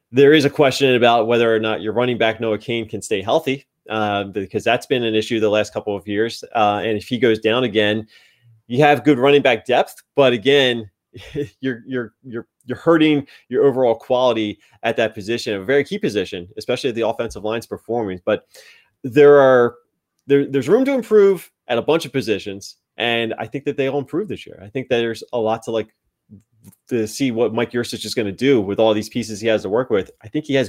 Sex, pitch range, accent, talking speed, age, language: male, 110-135 Hz, American, 225 wpm, 20-39, English